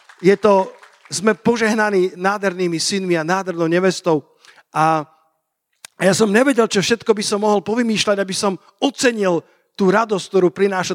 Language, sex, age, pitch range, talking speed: Slovak, male, 50-69, 180-215 Hz, 140 wpm